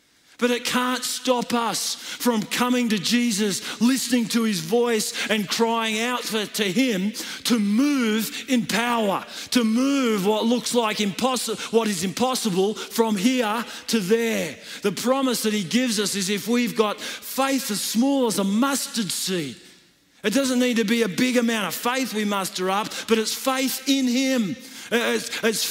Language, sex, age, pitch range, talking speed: English, male, 40-59, 220-255 Hz, 170 wpm